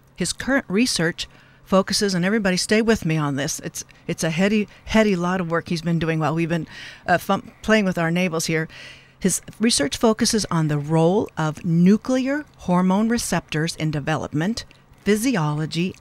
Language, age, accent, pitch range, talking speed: English, 50-69, American, 160-210 Hz, 170 wpm